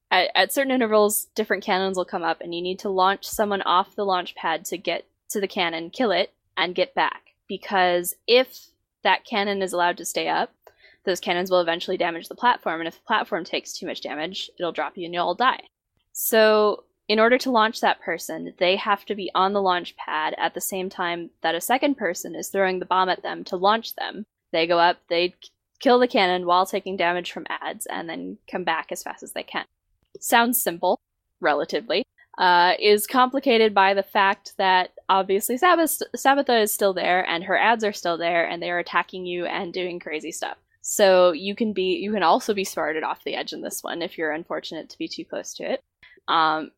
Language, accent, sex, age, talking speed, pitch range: English, American, female, 10-29, 215 wpm, 175-210 Hz